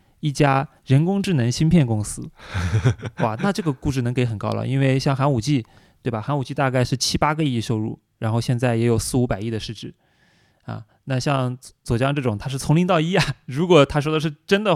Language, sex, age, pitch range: Chinese, male, 20-39, 120-155 Hz